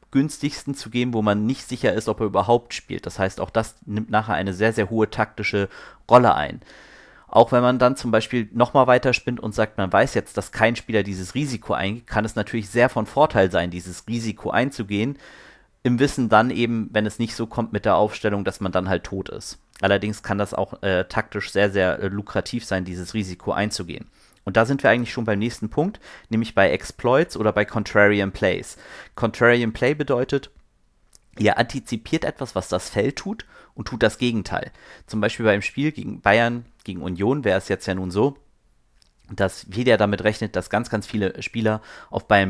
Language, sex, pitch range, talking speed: German, male, 100-120 Hz, 200 wpm